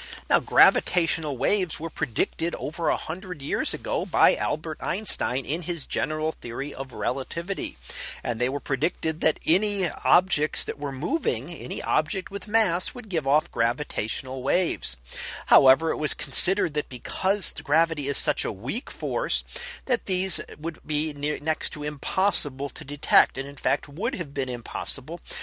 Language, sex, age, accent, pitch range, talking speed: English, male, 40-59, American, 135-185 Hz, 155 wpm